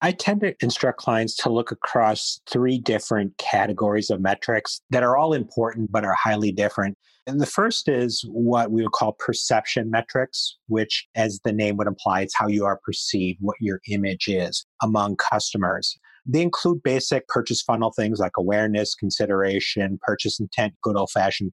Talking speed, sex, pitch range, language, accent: 175 wpm, male, 100-120 Hz, English, American